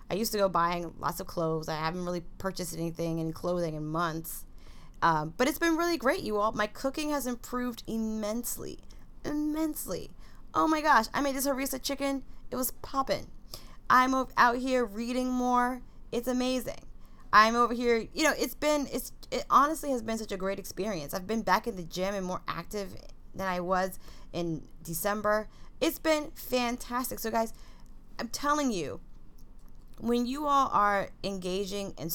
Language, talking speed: English, 170 wpm